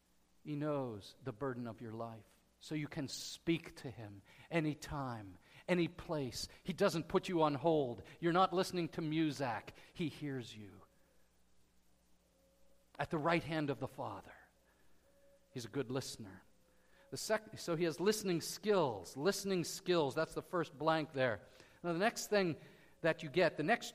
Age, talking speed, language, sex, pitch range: 50-69, 160 wpm, English, male, 130-215 Hz